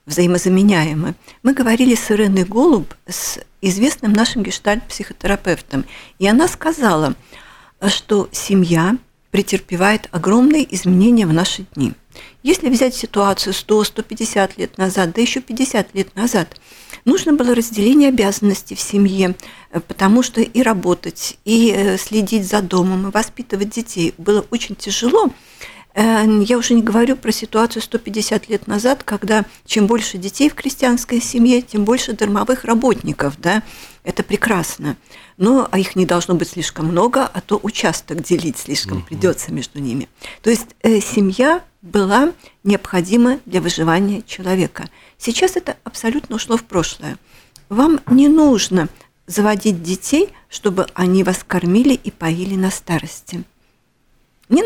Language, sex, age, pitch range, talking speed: Russian, female, 50-69, 185-235 Hz, 130 wpm